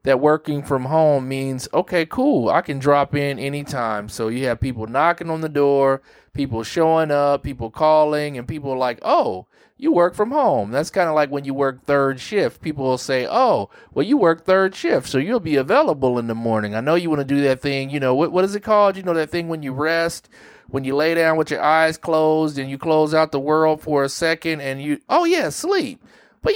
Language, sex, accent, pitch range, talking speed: English, male, American, 125-155 Hz, 235 wpm